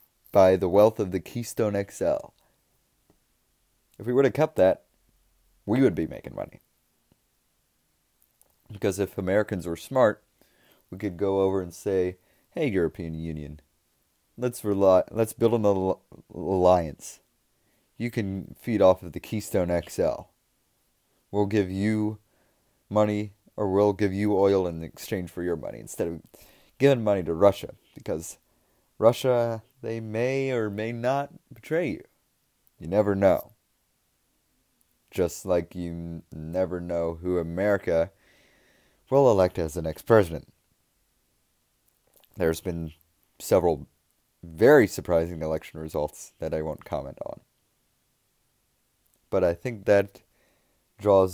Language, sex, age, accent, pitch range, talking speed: English, male, 30-49, American, 85-110 Hz, 125 wpm